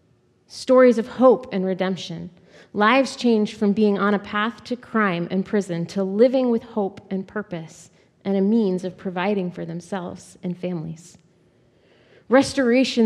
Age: 30-49